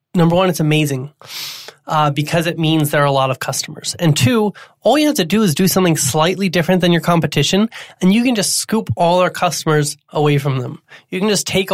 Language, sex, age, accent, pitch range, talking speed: English, male, 20-39, American, 150-180 Hz, 225 wpm